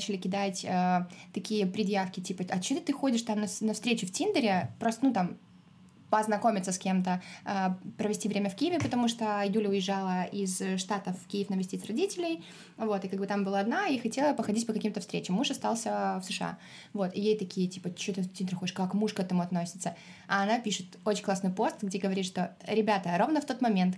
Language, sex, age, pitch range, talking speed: Russian, female, 20-39, 185-220 Hz, 205 wpm